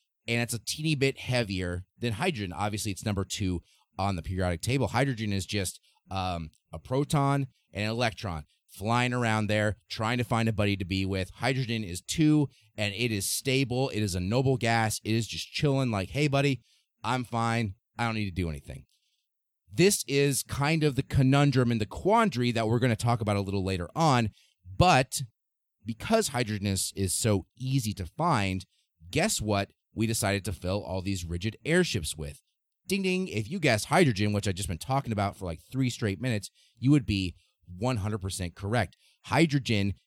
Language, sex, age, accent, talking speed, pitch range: English, male, 30-49, American, 190 wpm, 100-130 Hz